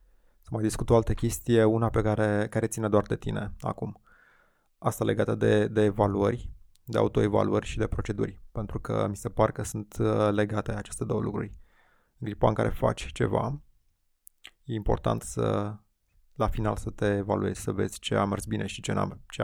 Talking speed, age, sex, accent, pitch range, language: 180 wpm, 20-39, male, native, 100-115 Hz, Romanian